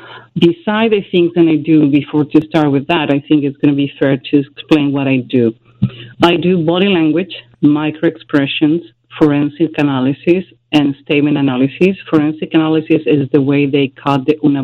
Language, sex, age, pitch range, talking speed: English, female, 40-59, 140-165 Hz, 175 wpm